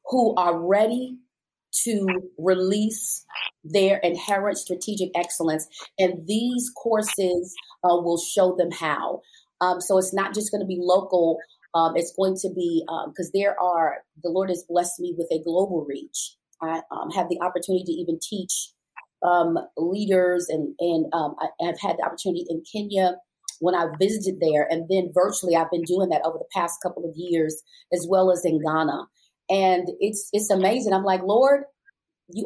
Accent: American